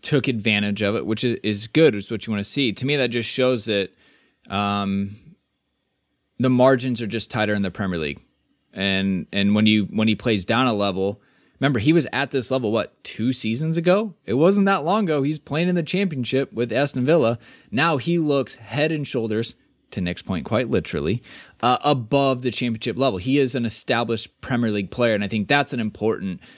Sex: male